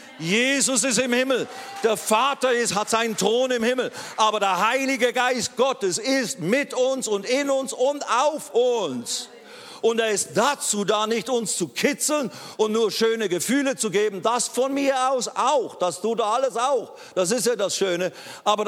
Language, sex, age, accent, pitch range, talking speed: German, male, 50-69, German, 205-260 Hz, 180 wpm